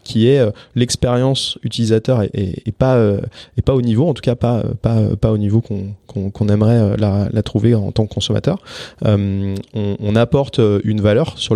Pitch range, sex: 105-125 Hz, male